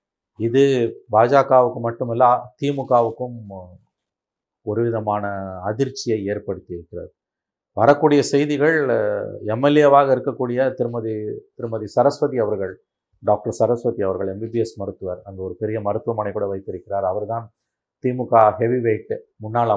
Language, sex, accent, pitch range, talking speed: Tamil, male, native, 110-140 Hz, 95 wpm